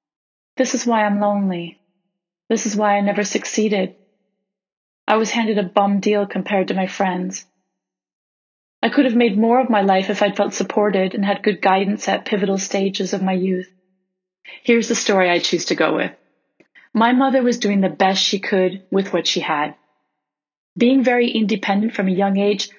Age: 30-49